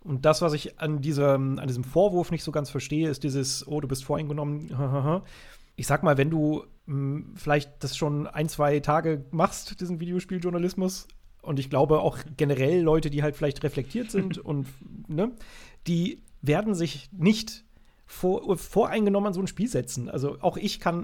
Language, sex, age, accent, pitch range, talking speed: German, male, 30-49, German, 140-180 Hz, 175 wpm